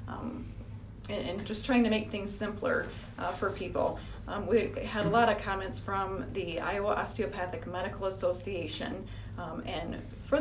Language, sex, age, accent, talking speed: English, female, 30-49, American, 160 wpm